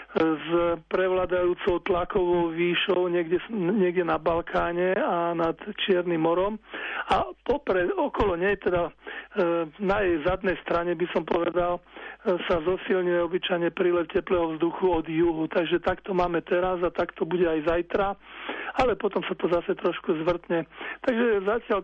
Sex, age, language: male, 40-59, Slovak